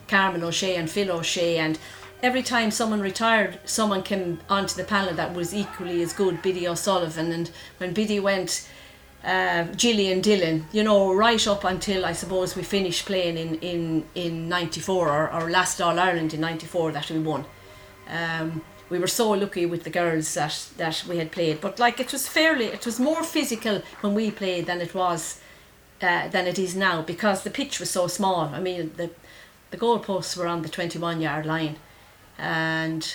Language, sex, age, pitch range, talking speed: English, female, 40-59, 165-190 Hz, 185 wpm